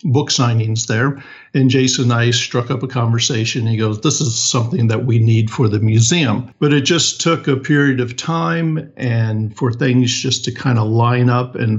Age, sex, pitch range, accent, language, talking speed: 50-69, male, 115-135 Hz, American, English, 205 wpm